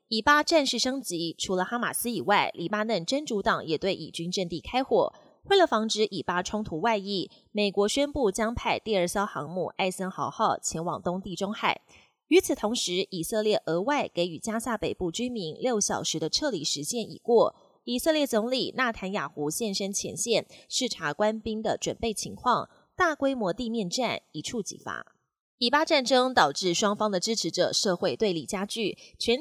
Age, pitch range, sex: 20-39, 180-240 Hz, female